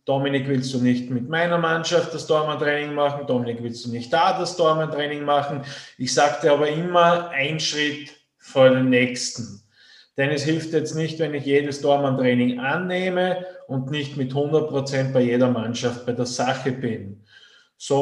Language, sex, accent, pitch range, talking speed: German, male, Austrian, 135-175 Hz, 165 wpm